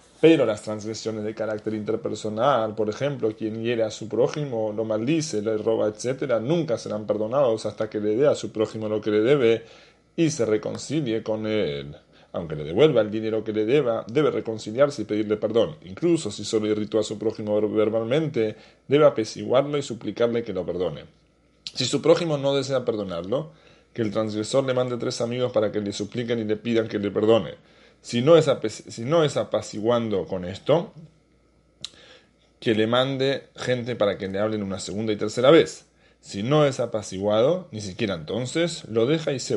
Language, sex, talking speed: English, male, 185 wpm